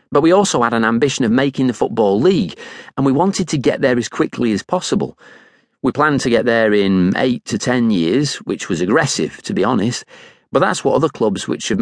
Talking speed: 220 wpm